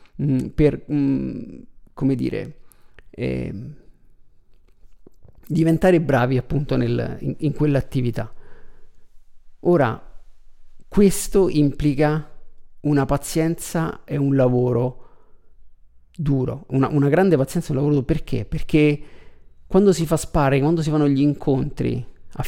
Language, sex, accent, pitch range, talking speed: Italian, male, native, 130-175 Hz, 100 wpm